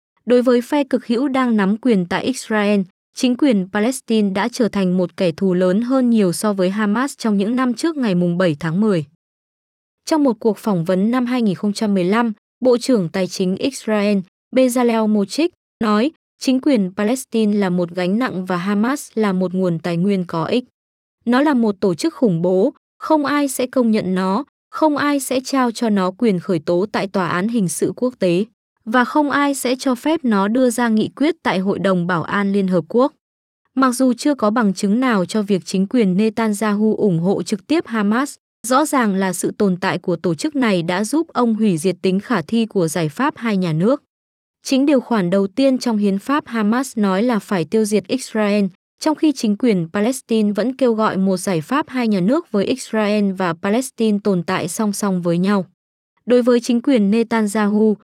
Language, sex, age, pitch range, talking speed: Vietnamese, female, 20-39, 190-255 Hz, 205 wpm